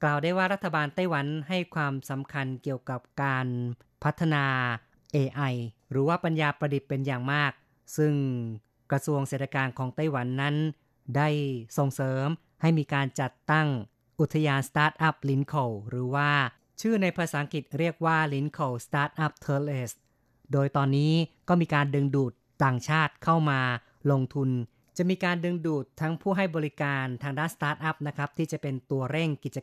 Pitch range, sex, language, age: 130-155 Hz, female, Thai, 30-49